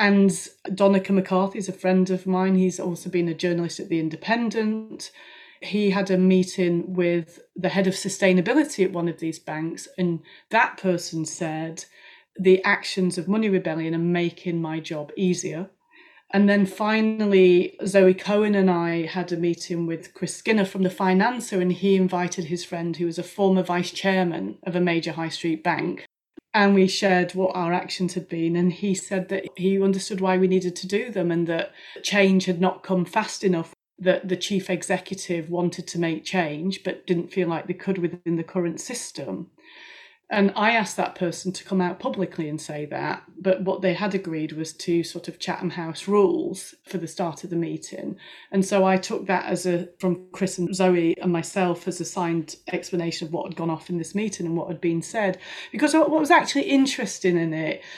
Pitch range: 170-195 Hz